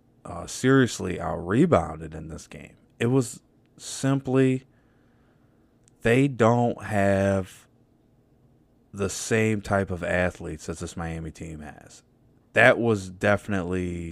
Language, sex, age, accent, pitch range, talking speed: English, male, 20-39, American, 90-120 Hz, 105 wpm